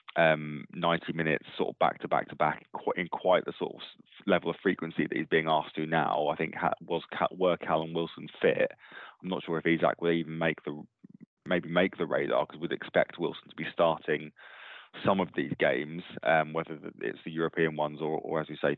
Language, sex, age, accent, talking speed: English, male, 20-39, British, 215 wpm